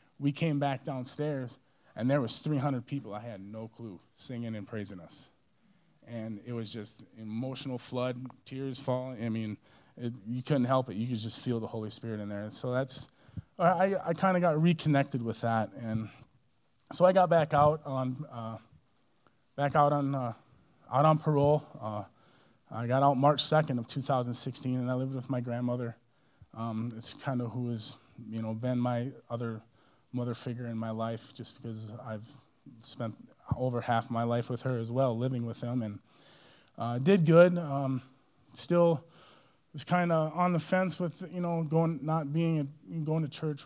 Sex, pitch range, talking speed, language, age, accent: male, 115-140 Hz, 180 wpm, English, 20-39, American